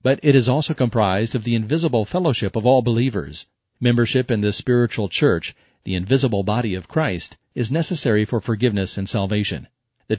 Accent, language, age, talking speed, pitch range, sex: American, English, 40-59, 170 wpm, 110-135 Hz, male